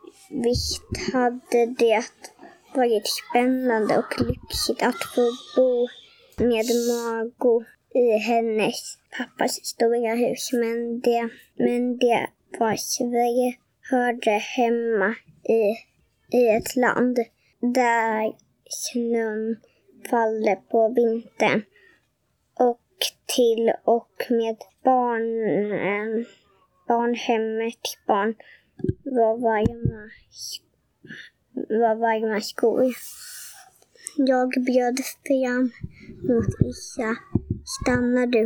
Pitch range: 225-250 Hz